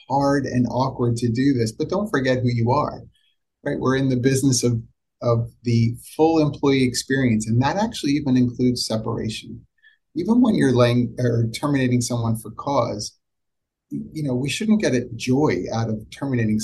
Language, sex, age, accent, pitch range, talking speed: English, male, 30-49, American, 110-130 Hz, 175 wpm